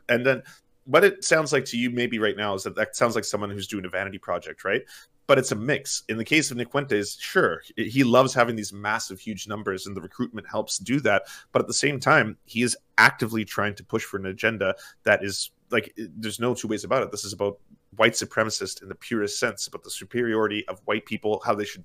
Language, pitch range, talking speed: English, 105-120 Hz, 240 wpm